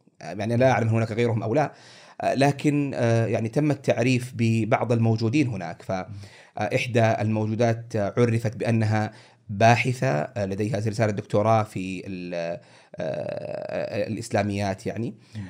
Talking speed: 100 wpm